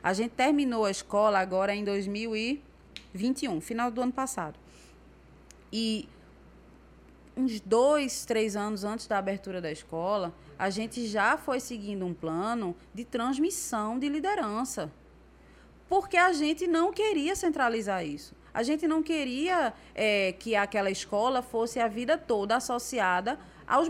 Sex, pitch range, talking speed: female, 190-270 Hz, 135 wpm